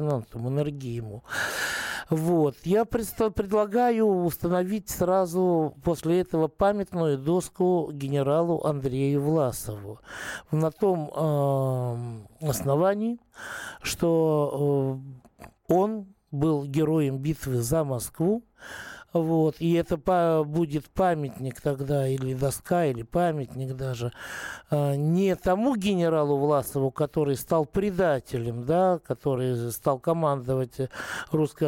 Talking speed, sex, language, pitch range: 85 wpm, male, Russian, 140-180 Hz